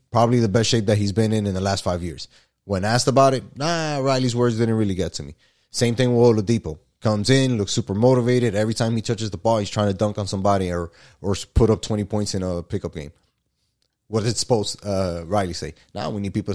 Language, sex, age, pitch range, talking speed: English, male, 20-39, 95-120 Hz, 245 wpm